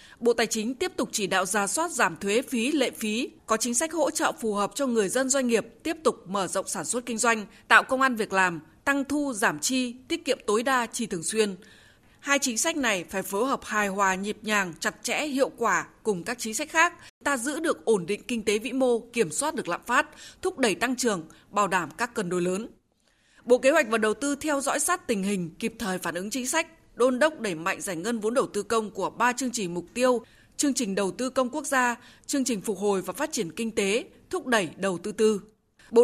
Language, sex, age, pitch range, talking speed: Vietnamese, female, 20-39, 205-265 Hz, 250 wpm